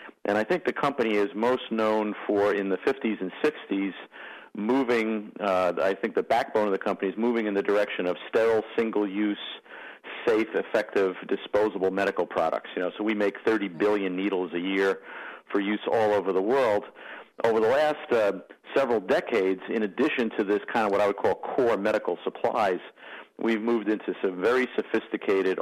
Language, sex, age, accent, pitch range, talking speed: English, male, 50-69, American, 95-115 Hz, 180 wpm